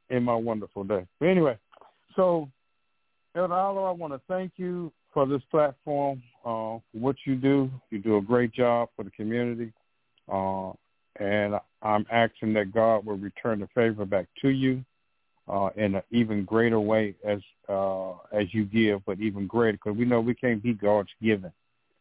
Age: 50-69